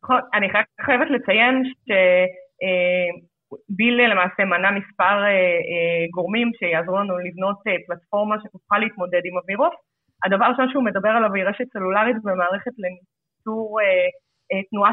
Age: 20-39